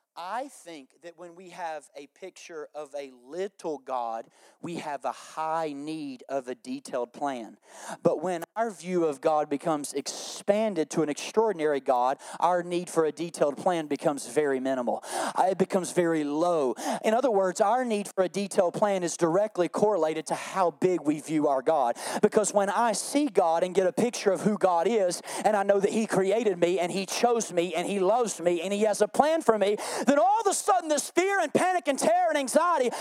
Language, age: English, 40-59